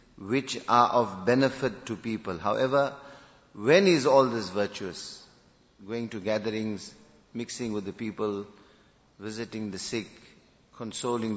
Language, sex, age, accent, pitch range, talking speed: English, male, 50-69, Indian, 105-125 Hz, 120 wpm